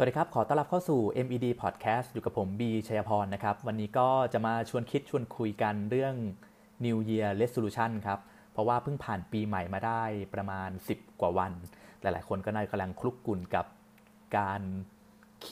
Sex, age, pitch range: male, 30-49, 100-125 Hz